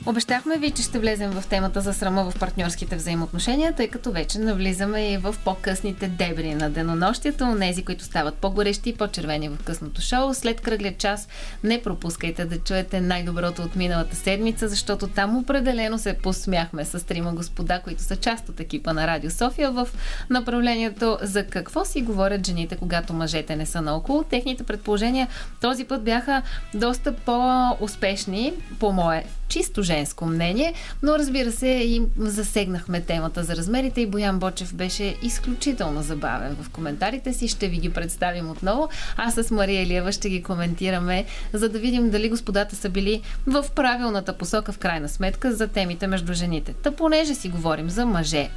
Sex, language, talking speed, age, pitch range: female, Bulgarian, 165 wpm, 20-39, 175-235 Hz